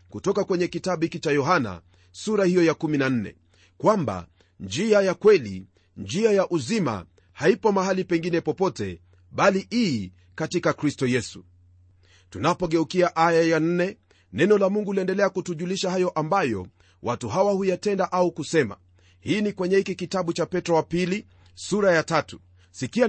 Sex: male